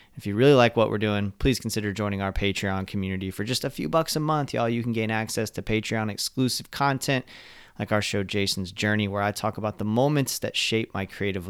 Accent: American